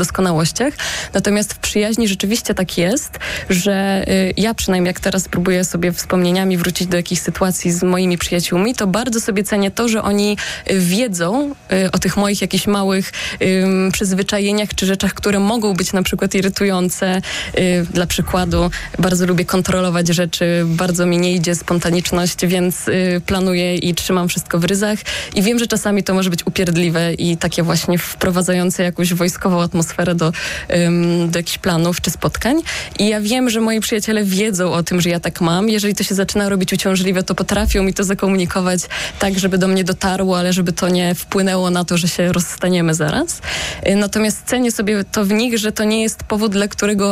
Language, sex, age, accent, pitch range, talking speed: Polish, female, 20-39, native, 180-205 Hz, 175 wpm